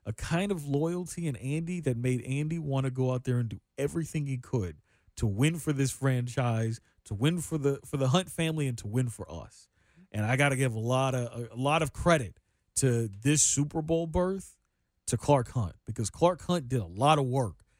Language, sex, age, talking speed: English, male, 40-59, 220 wpm